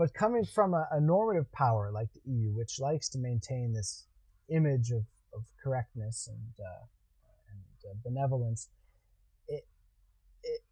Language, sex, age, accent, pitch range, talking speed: English, male, 30-49, American, 115-160 Hz, 145 wpm